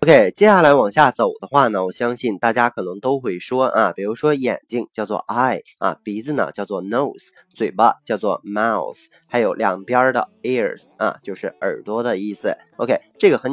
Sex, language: male, Chinese